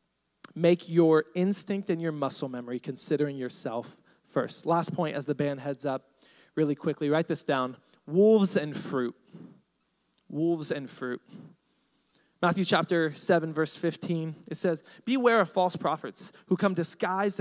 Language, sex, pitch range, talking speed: English, male, 160-220 Hz, 145 wpm